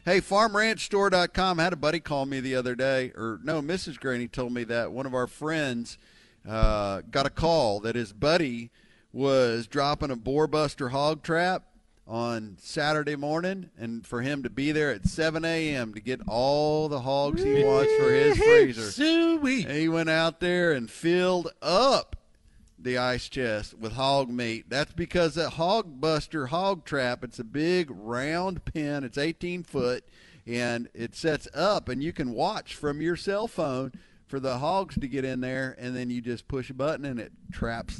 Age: 50-69